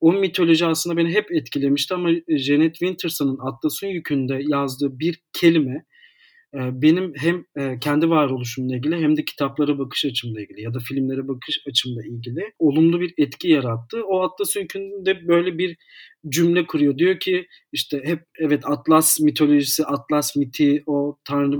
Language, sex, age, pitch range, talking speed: Turkish, male, 40-59, 140-170 Hz, 145 wpm